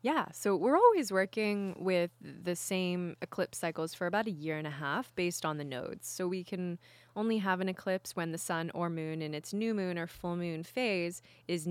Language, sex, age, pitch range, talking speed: English, female, 20-39, 160-200 Hz, 215 wpm